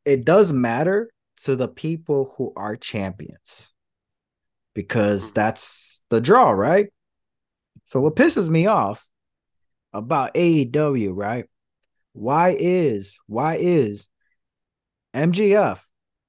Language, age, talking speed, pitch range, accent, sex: English, 20-39, 100 wpm, 120-165 Hz, American, male